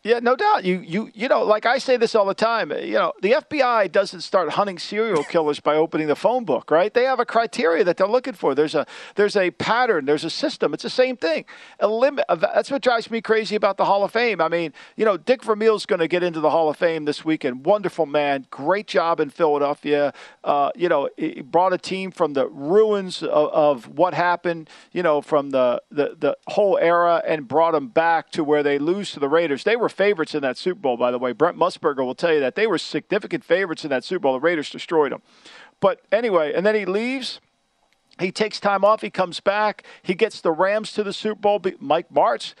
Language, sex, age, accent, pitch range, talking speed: English, male, 50-69, American, 165-225 Hz, 235 wpm